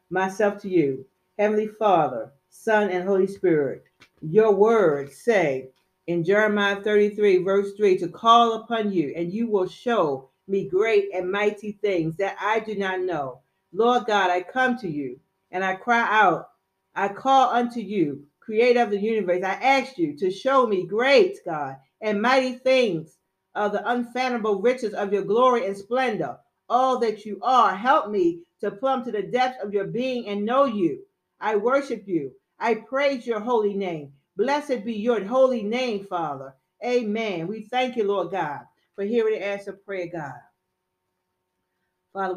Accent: American